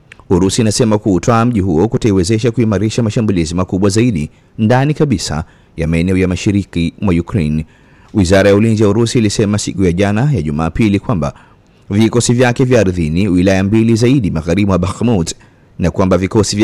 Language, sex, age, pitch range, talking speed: English, male, 30-49, 95-120 Hz, 150 wpm